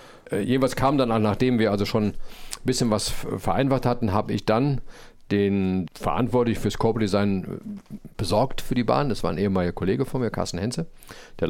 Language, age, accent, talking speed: German, 50-69, German, 185 wpm